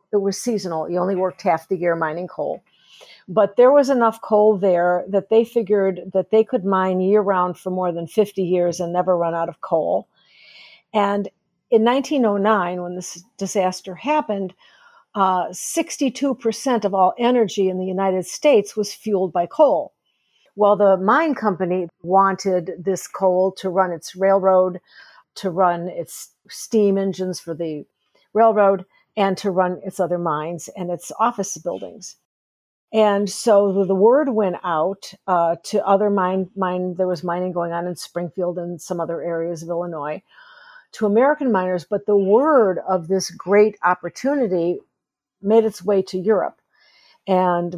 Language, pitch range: English, 180-210 Hz